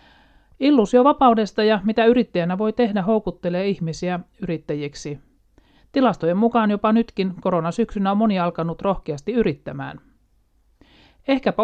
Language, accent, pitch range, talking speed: Finnish, native, 170-225 Hz, 110 wpm